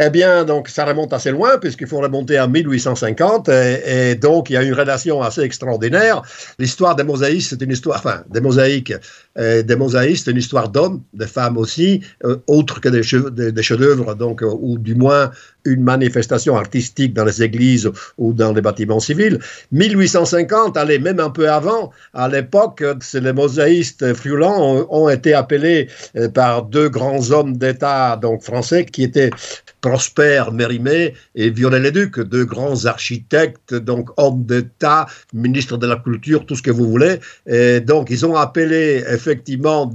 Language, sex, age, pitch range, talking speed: French, male, 60-79, 120-150 Hz, 175 wpm